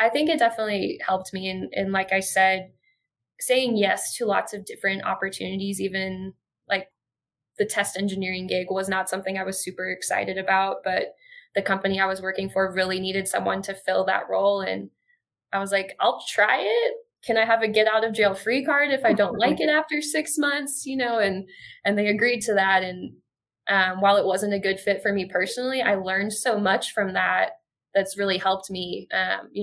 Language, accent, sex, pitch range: English, American, female, 190-210 Hz